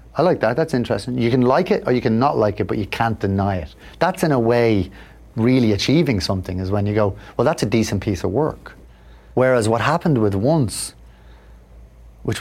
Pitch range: 95-125 Hz